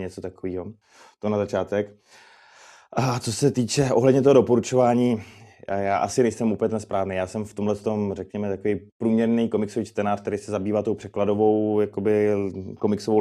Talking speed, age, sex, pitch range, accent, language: 160 wpm, 20-39, male, 95-105 Hz, native, Czech